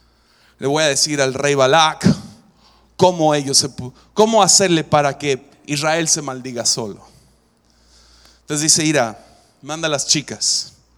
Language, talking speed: English, 135 wpm